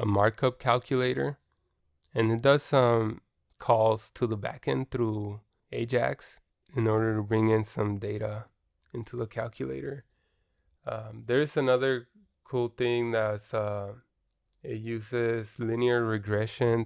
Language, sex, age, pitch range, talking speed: English, male, 20-39, 110-125 Hz, 120 wpm